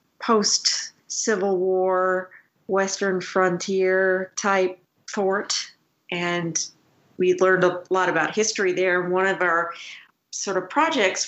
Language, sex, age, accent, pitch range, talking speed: English, female, 40-59, American, 170-195 Hz, 100 wpm